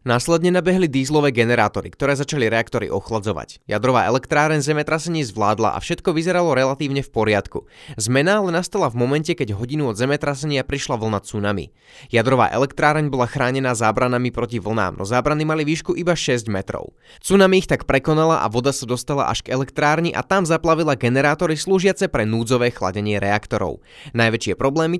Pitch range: 115-155 Hz